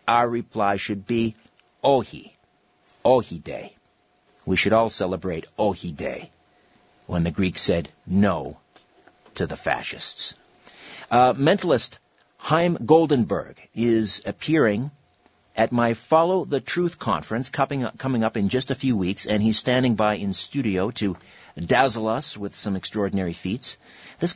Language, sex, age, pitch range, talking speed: English, male, 50-69, 105-135 Hz, 135 wpm